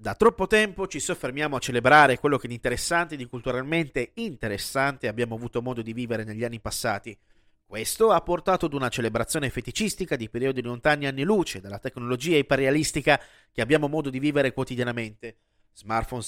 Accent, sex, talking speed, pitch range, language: native, male, 160 wpm, 120-170 Hz, Italian